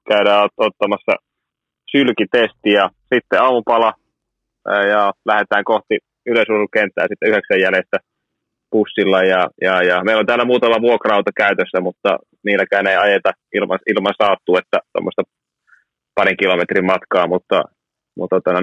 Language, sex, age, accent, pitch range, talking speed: Finnish, male, 30-49, native, 95-115 Hz, 120 wpm